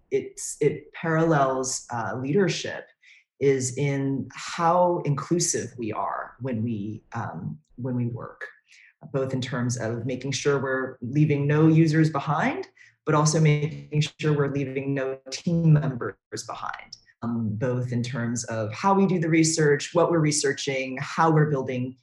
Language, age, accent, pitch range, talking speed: English, 30-49, American, 120-150 Hz, 140 wpm